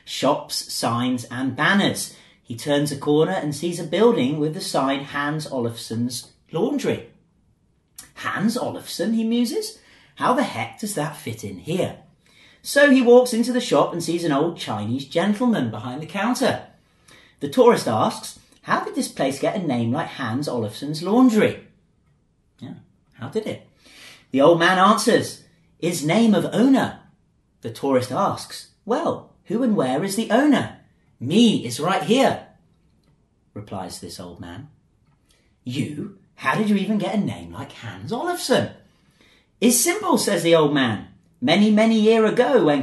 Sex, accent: male, British